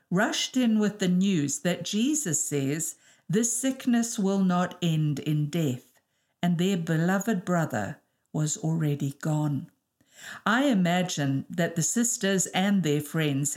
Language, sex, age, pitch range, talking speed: English, female, 50-69, 150-200 Hz, 135 wpm